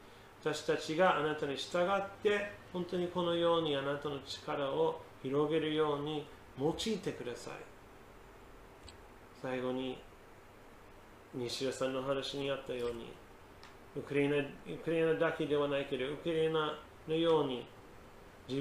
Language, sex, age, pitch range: Japanese, male, 40-59, 125-160 Hz